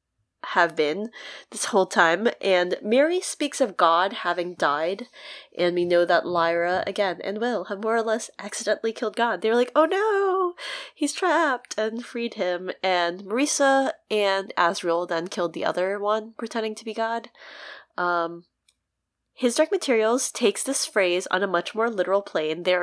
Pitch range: 170-215 Hz